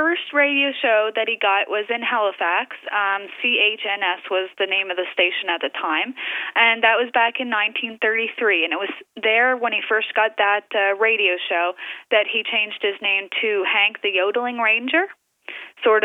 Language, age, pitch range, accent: English, 20-39, 180-230 Hz, American